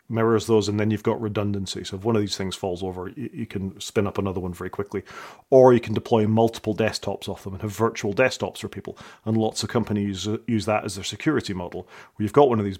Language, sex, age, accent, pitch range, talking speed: English, male, 40-59, British, 100-115 Hz, 265 wpm